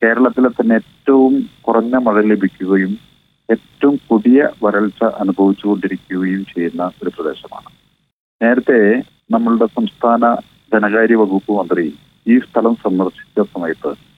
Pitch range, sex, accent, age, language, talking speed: 105-125 Hz, male, native, 40-59, Malayalam, 95 wpm